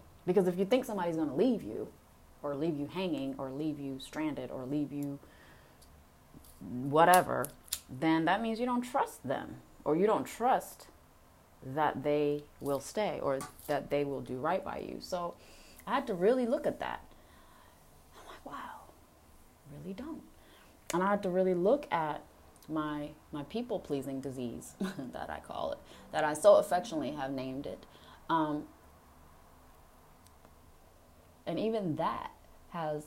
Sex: female